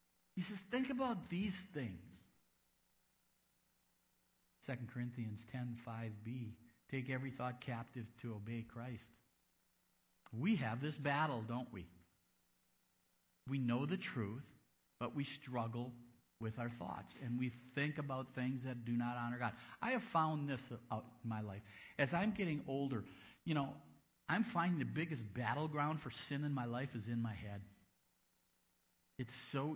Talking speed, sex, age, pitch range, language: 150 wpm, male, 50-69, 95-135 Hz, English